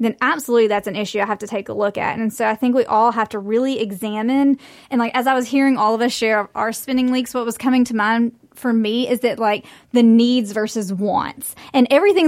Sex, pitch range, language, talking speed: female, 210-240 Hz, English, 250 wpm